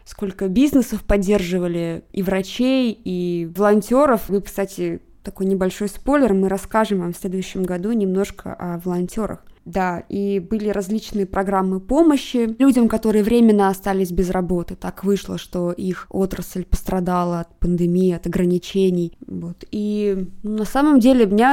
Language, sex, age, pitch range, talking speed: Russian, female, 20-39, 180-215 Hz, 140 wpm